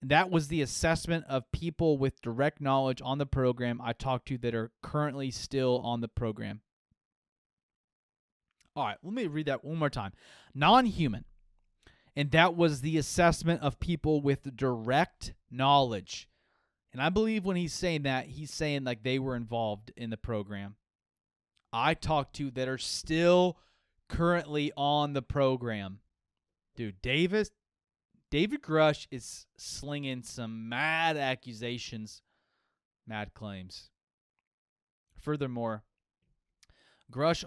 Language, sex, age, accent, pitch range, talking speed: English, male, 30-49, American, 115-150 Hz, 130 wpm